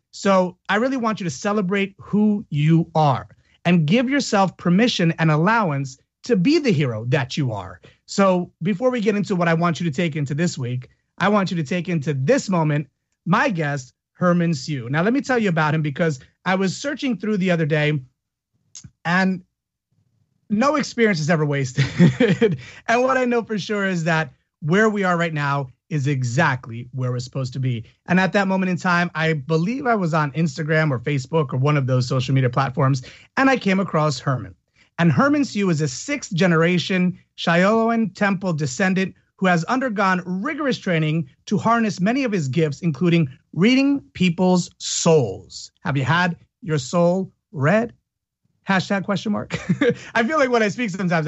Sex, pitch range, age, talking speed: male, 145-200 Hz, 30-49, 185 wpm